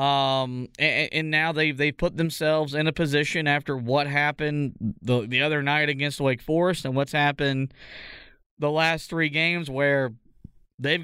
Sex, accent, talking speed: male, American, 165 wpm